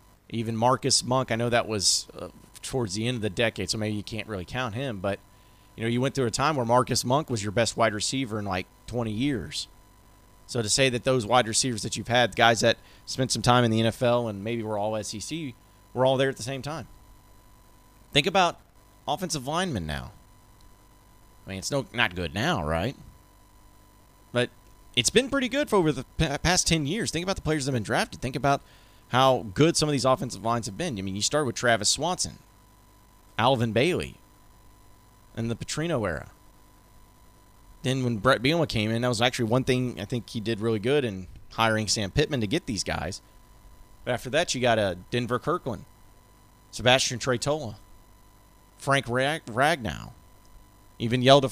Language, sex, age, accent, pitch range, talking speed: English, male, 30-49, American, 100-130 Hz, 195 wpm